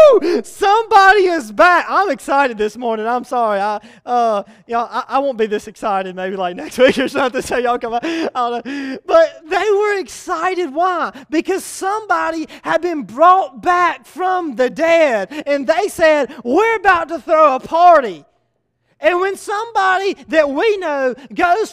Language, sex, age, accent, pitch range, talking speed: English, male, 30-49, American, 285-410 Hz, 155 wpm